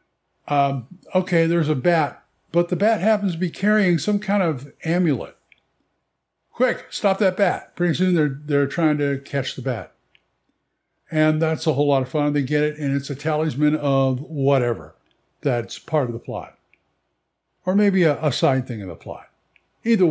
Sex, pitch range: male, 135-175 Hz